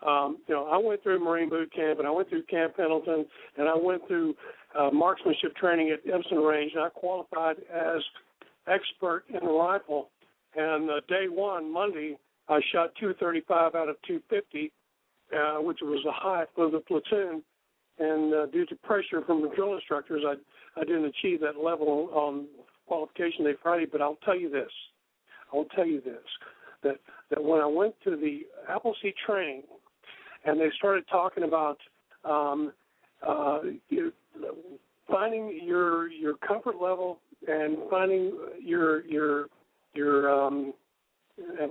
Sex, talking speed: male, 155 wpm